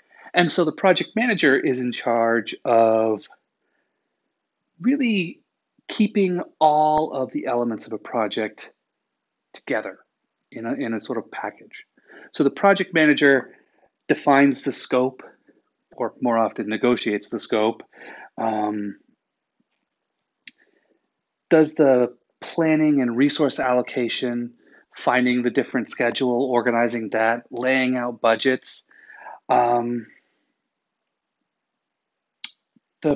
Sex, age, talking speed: male, 30-49, 105 wpm